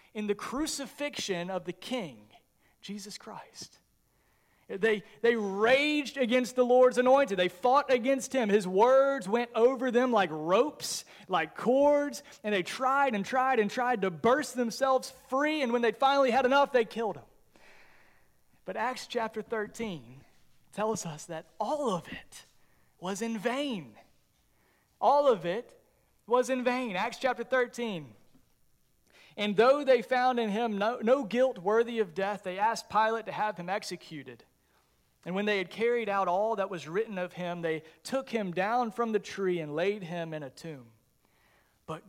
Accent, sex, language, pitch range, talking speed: American, male, English, 185-250 Hz, 165 wpm